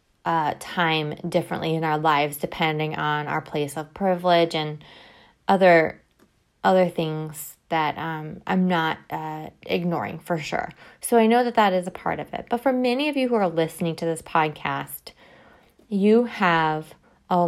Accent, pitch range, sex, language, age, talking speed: American, 155-185 Hz, female, English, 20-39, 165 wpm